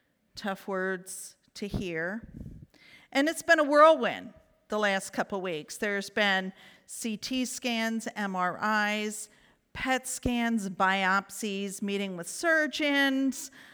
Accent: American